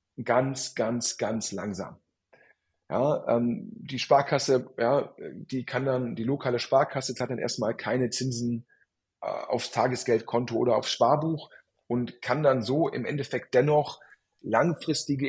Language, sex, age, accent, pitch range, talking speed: German, male, 40-59, German, 125-155 Hz, 135 wpm